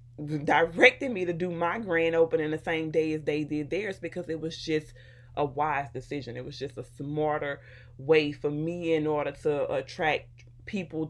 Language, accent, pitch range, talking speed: English, American, 140-175 Hz, 185 wpm